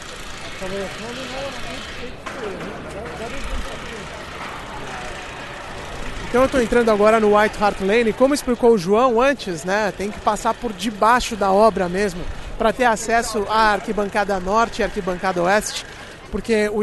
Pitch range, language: 205-245 Hz, Portuguese